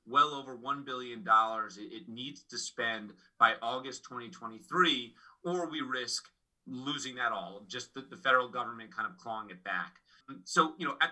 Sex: male